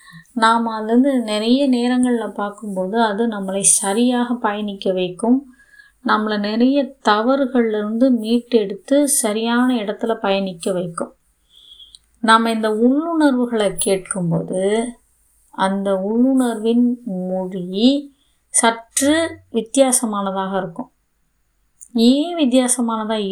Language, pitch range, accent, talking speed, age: Tamil, 200-265 Hz, native, 80 wpm, 20-39